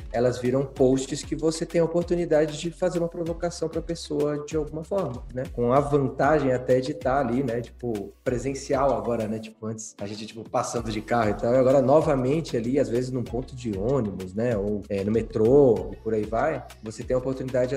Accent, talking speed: Brazilian, 215 wpm